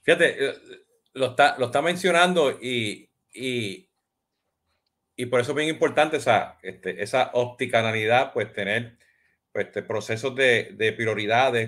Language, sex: Spanish, male